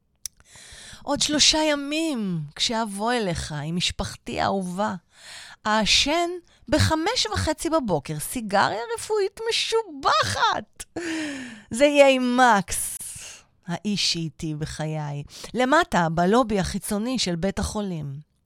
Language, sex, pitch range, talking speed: Hebrew, female, 175-275 Hz, 90 wpm